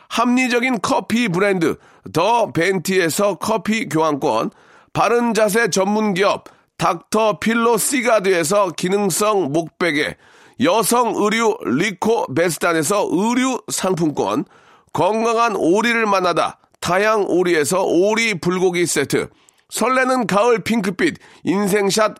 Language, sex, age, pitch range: Korean, male, 40-59, 185-230 Hz